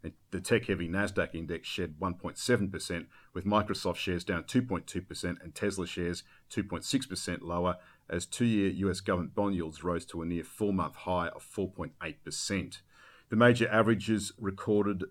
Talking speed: 135 wpm